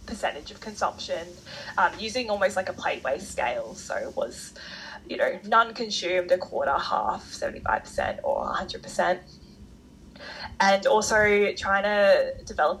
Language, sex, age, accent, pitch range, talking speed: English, female, 20-39, Australian, 185-245 Hz, 140 wpm